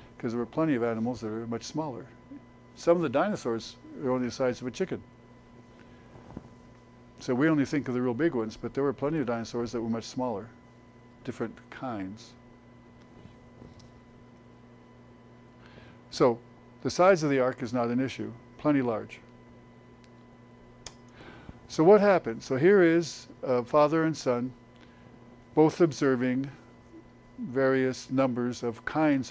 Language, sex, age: English, male, 50-69